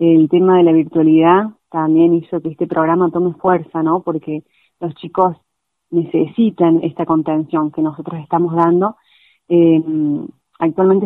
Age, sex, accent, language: 30-49, female, Argentinian, Spanish